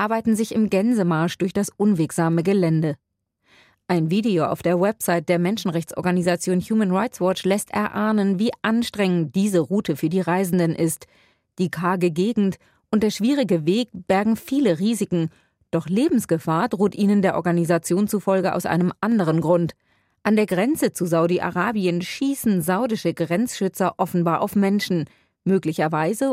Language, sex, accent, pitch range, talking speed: German, female, German, 175-210 Hz, 140 wpm